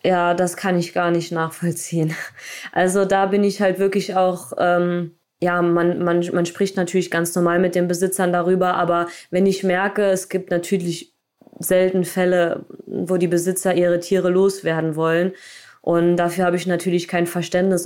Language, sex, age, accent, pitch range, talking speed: German, female, 20-39, German, 175-185 Hz, 170 wpm